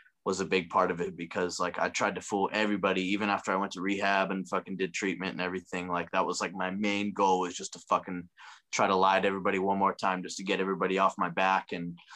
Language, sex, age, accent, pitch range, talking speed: English, male, 20-39, American, 95-105 Hz, 255 wpm